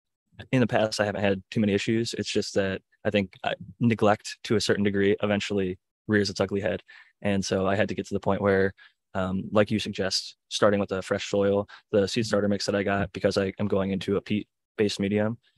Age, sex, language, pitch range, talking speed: 20-39, male, English, 95-105 Hz, 225 wpm